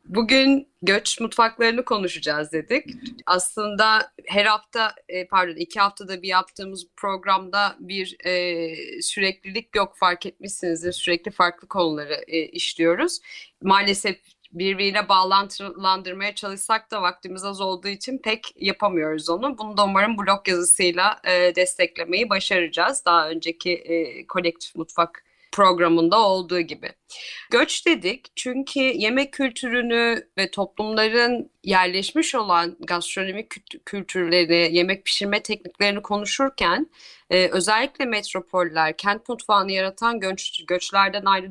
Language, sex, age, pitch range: Turkish, female, 30-49, 180-220 Hz